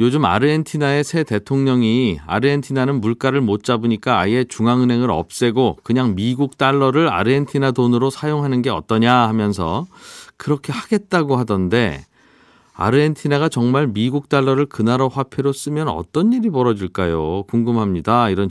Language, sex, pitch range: Korean, male, 115-150 Hz